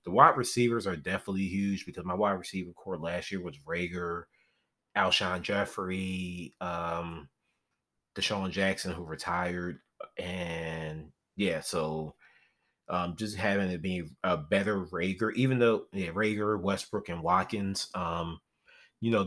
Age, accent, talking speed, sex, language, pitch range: 30-49, American, 135 wpm, male, English, 85-105 Hz